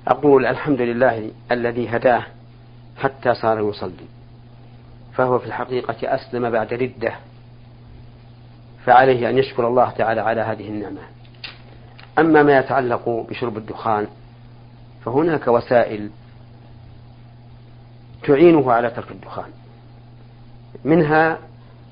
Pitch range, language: 120-125 Hz, Arabic